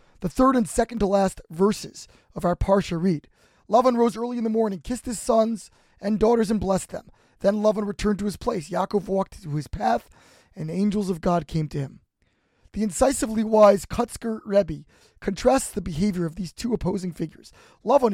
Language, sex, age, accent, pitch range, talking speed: English, male, 20-39, American, 180-225 Hz, 180 wpm